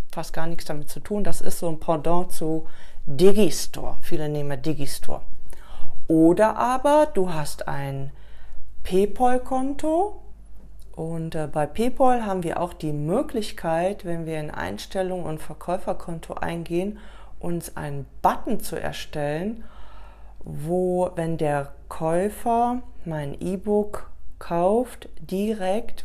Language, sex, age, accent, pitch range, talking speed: German, female, 40-59, German, 155-195 Hz, 115 wpm